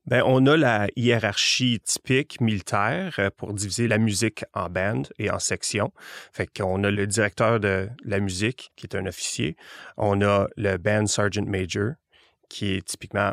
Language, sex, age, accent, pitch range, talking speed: French, male, 30-49, Canadian, 100-120 Hz, 165 wpm